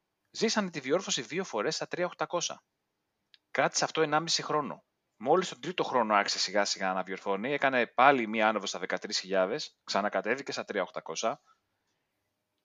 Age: 30-49